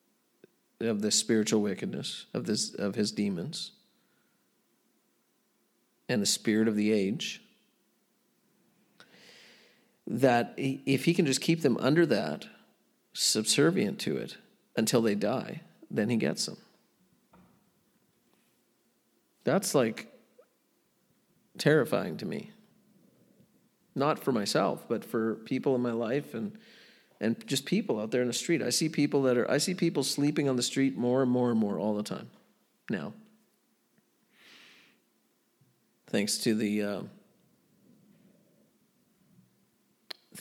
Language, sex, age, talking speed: English, male, 50-69, 120 wpm